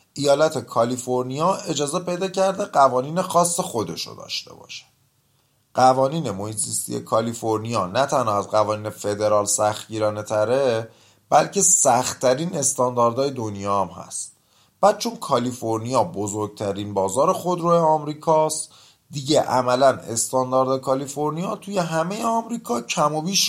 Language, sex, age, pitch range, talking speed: Persian, male, 30-49, 105-160 Hz, 110 wpm